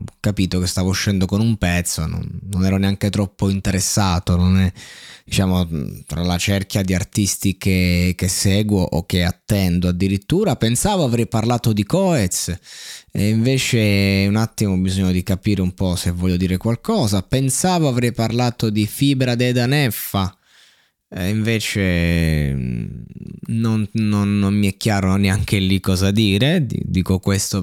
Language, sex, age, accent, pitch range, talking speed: Italian, male, 20-39, native, 95-120 Hz, 145 wpm